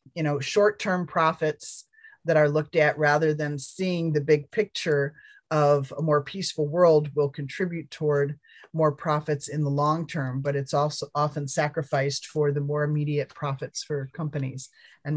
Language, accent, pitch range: English, American, 140-165 Hz